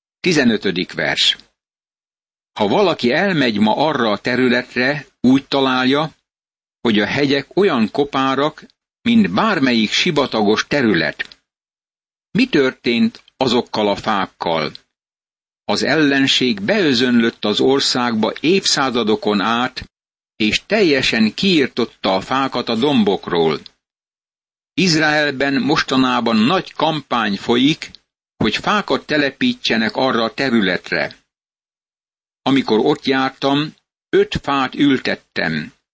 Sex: male